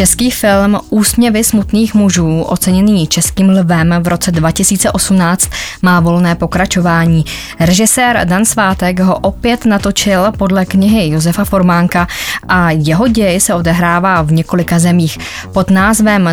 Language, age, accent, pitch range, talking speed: Czech, 20-39, native, 160-200 Hz, 125 wpm